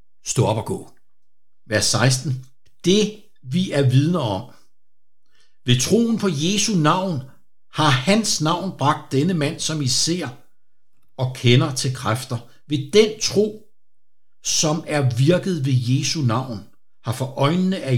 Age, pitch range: 60-79, 125-160 Hz